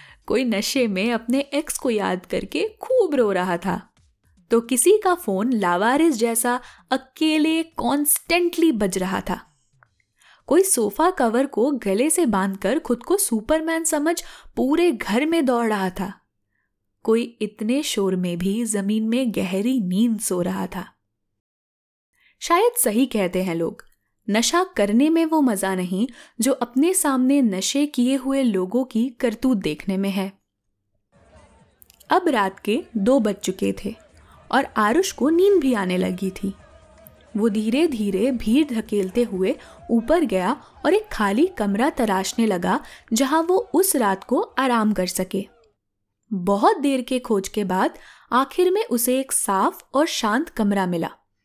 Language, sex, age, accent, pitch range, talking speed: Hindi, female, 10-29, native, 200-290 Hz, 150 wpm